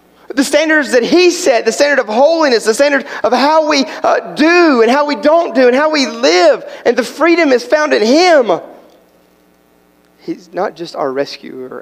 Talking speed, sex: 190 wpm, male